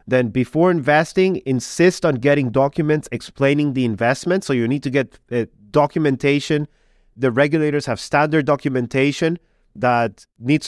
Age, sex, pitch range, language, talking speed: 30-49, male, 125-150 Hz, English, 135 wpm